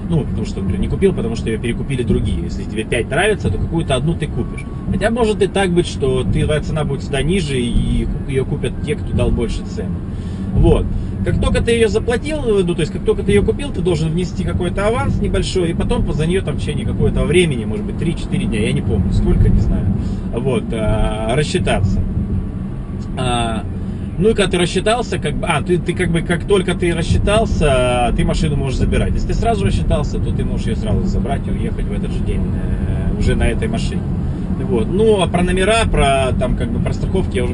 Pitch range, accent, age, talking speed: 95-140 Hz, native, 30-49, 215 wpm